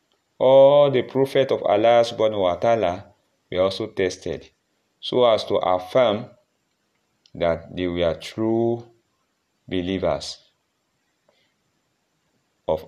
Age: 30-49